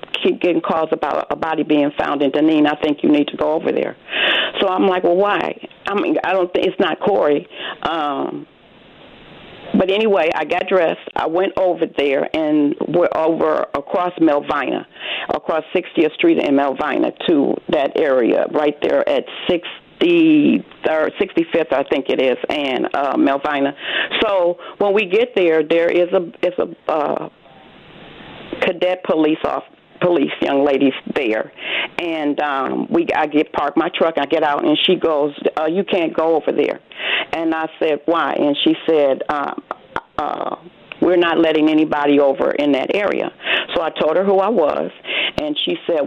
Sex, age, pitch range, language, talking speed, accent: female, 40-59, 150-200 Hz, English, 170 wpm, American